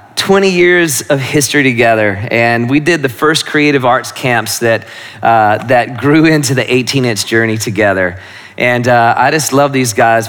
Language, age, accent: English, 30-49, American